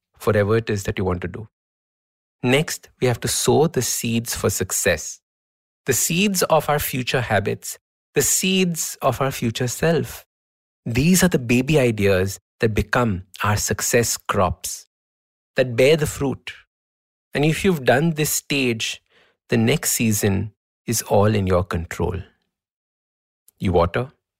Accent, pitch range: Indian, 95-140 Hz